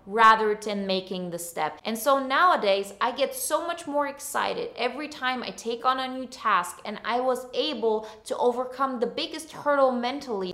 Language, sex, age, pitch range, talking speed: English, female, 20-39, 195-255 Hz, 180 wpm